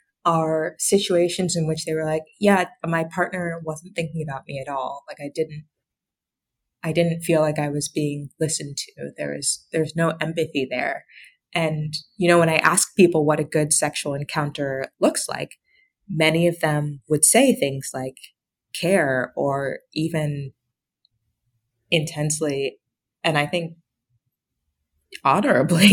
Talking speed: 145 wpm